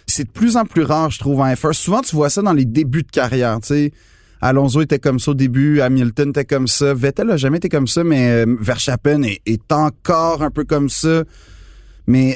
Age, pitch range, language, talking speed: 30-49, 120-155 Hz, French, 220 wpm